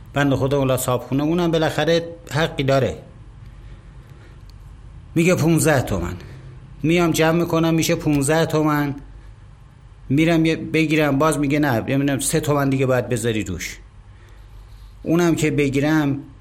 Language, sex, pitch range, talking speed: Persian, male, 115-155 Hz, 115 wpm